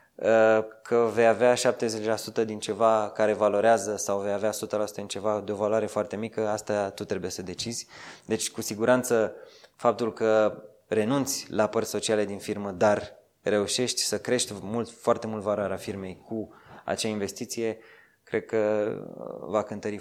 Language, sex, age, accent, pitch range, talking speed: Romanian, male, 20-39, native, 100-115 Hz, 155 wpm